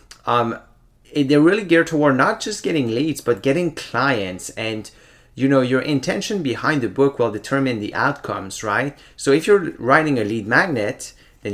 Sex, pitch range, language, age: male, 105-135 Hz, English, 30-49